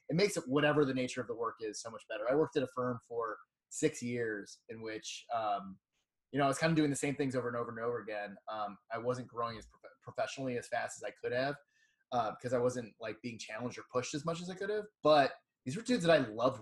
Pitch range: 125-160 Hz